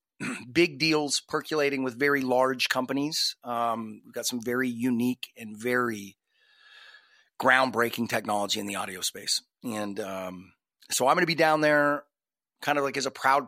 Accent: American